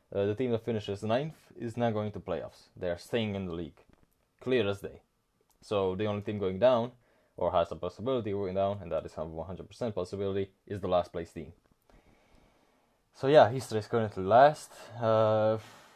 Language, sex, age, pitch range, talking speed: English, male, 20-39, 90-110 Hz, 190 wpm